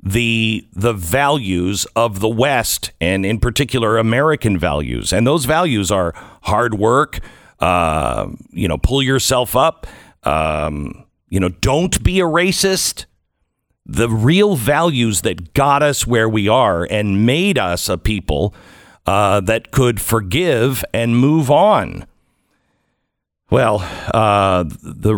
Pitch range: 95-130 Hz